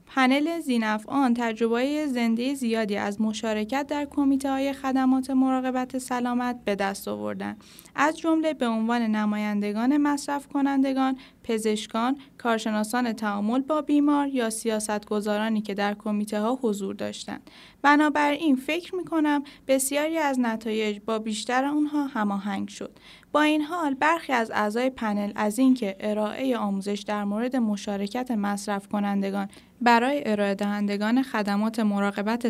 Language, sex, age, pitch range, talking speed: Persian, female, 10-29, 205-265 Hz, 130 wpm